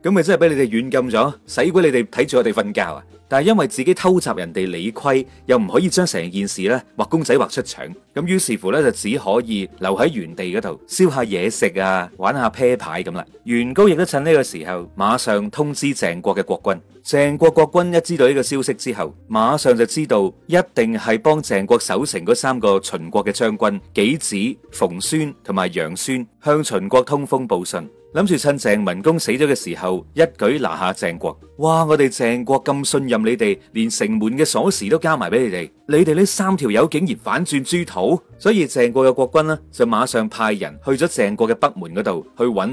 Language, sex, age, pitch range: Chinese, male, 30-49, 115-165 Hz